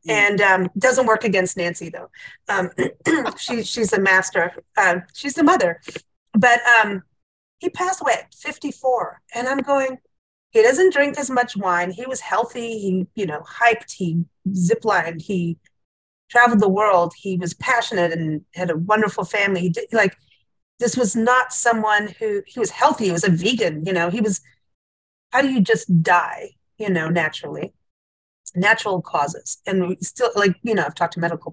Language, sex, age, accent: English, female, 40-59, American